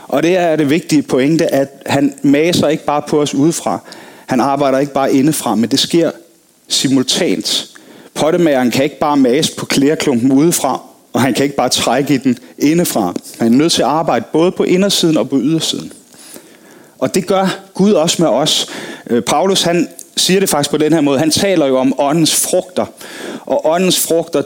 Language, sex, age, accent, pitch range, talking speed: Danish, male, 30-49, native, 140-190 Hz, 190 wpm